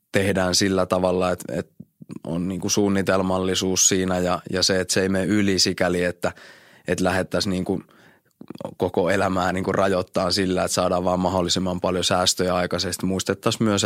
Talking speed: 130 wpm